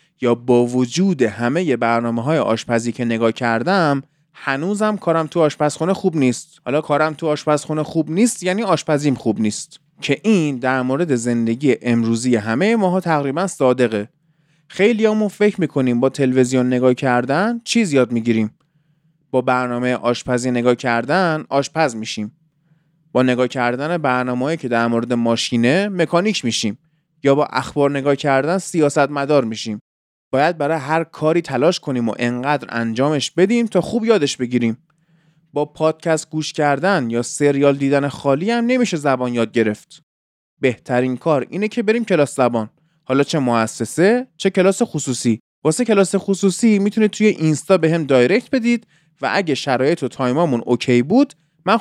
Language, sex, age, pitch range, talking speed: Persian, male, 20-39, 125-170 Hz, 145 wpm